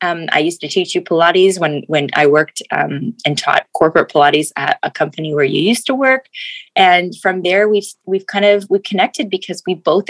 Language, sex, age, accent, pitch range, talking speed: English, female, 20-39, American, 150-205 Hz, 215 wpm